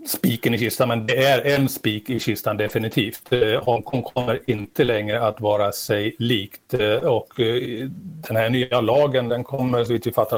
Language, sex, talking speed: Swedish, male, 175 wpm